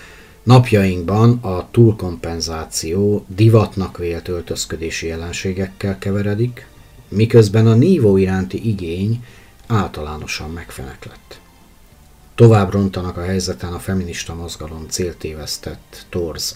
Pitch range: 85-105 Hz